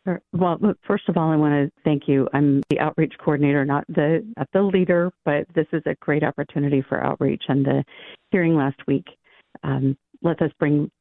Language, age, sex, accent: English, 40-59, female, American